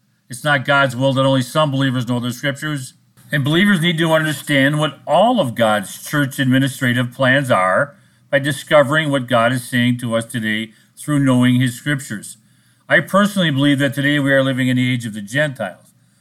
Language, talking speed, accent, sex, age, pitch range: English, 190 wpm, American, male, 50-69, 125-155 Hz